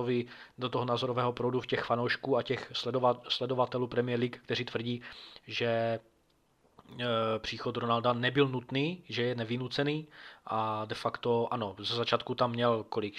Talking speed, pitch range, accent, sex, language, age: 140 wpm, 115-125 Hz, native, male, Czech, 20-39